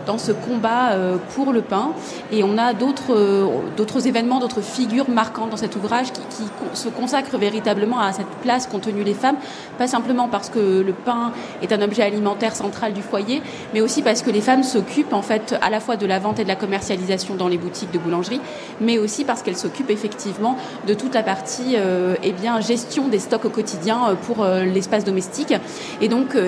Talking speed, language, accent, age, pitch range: 200 wpm, French, French, 20-39, 200-240 Hz